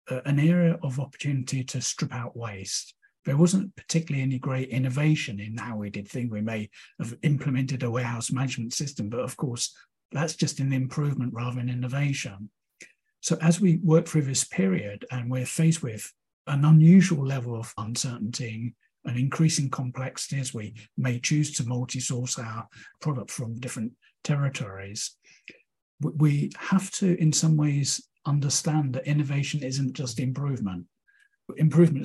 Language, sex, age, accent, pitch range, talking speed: English, male, 50-69, British, 125-155 Hz, 150 wpm